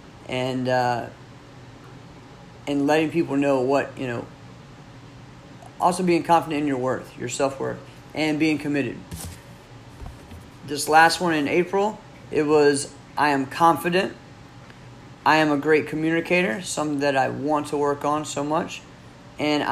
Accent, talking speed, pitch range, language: American, 135 wpm, 135-160 Hz, English